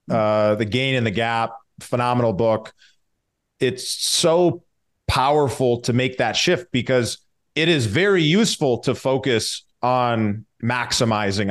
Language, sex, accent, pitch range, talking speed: English, male, American, 110-130 Hz, 125 wpm